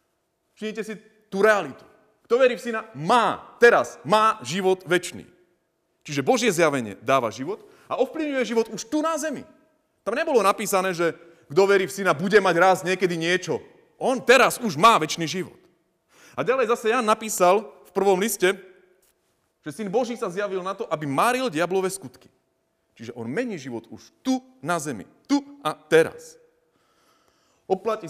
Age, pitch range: 30-49, 130-220 Hz